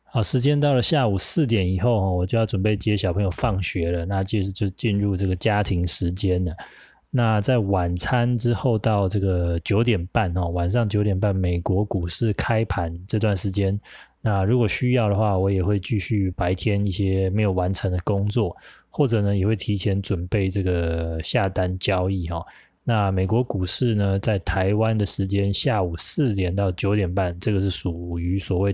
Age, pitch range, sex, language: 20-39, 90-110 Hz, male, Chinese